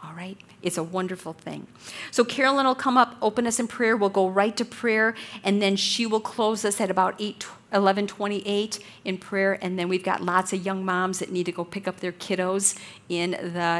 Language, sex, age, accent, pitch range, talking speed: English, female, 50-69, American, 185-230 Hz, 210 wpm